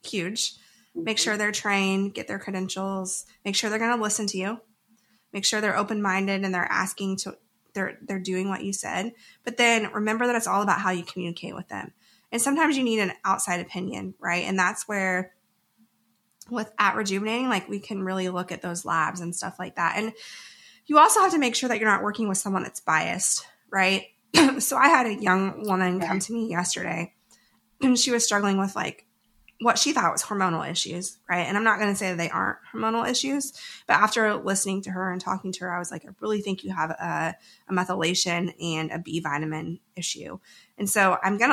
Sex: female